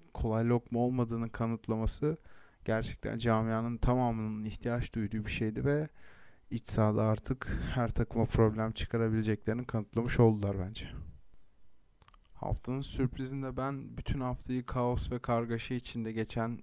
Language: Turkish